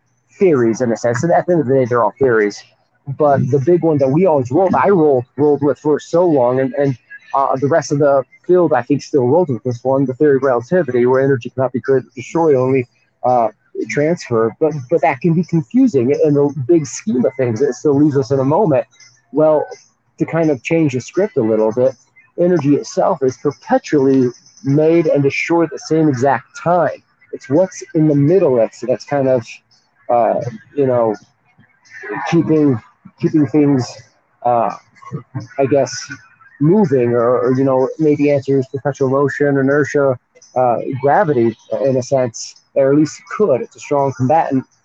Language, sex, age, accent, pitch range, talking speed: English, male, 40-59, American, 125-150 Hz, 185 wpm